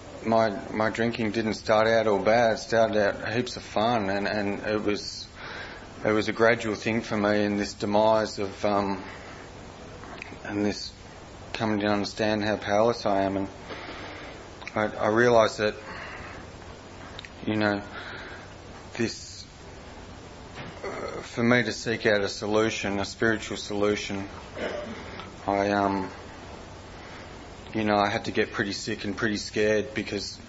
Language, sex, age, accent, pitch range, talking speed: English, male, 30-49, Australian, 100-110 Hz, 140 wpm